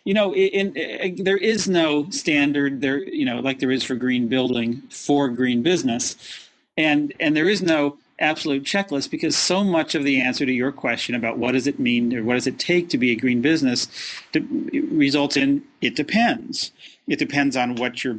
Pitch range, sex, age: 125-195 Hz, male, 40-59